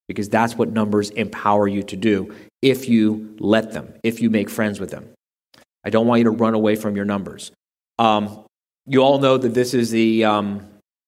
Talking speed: 200 wpm